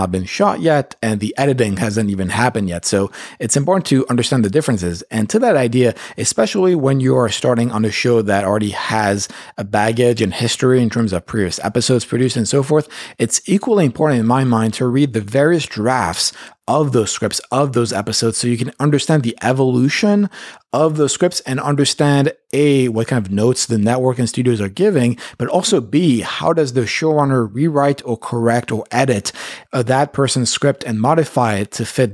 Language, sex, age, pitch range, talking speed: English, male, 30-49, 115-140 Hz, 195 wpm